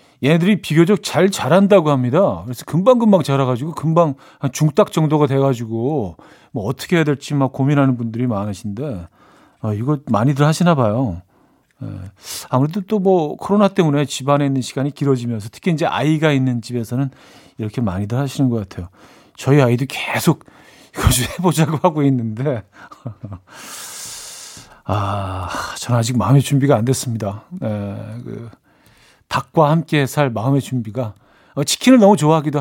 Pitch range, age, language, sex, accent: 125-165 Hz, 40-59, Korean, male, native